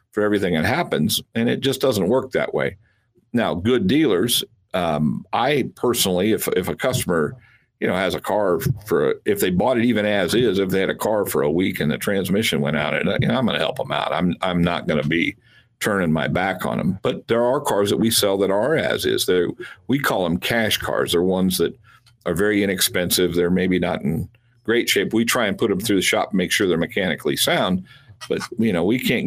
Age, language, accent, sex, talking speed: 50-69, English, American, male, 235 wpm